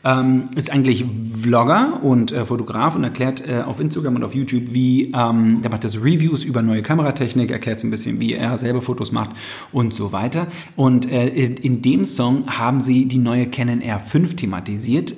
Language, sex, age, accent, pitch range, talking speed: German, male, 40-59, German, 115-135 Hz, 190 wpm